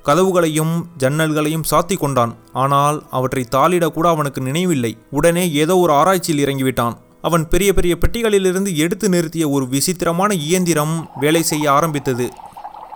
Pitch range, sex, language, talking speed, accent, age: 145-180 Hz, male, Tamil, 120 wpm, native, 30-49